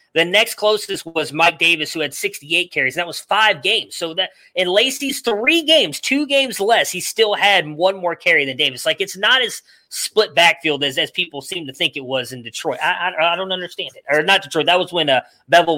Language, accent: English, American